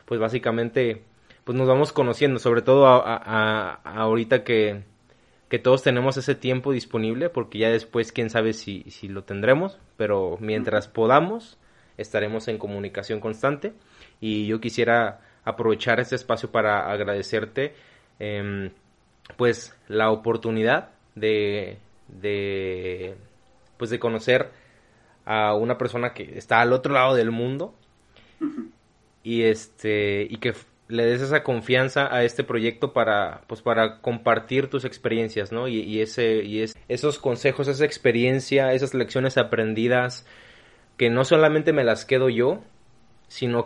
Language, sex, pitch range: Spanish, male, 110-125 Hz